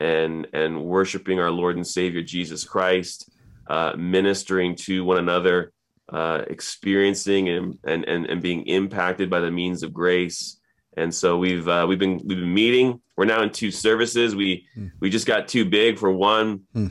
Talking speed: 170 wpm